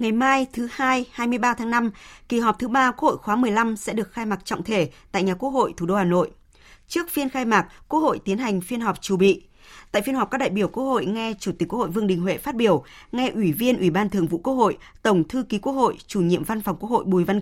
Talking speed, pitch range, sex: 280 wpm, 185-240 Hz, female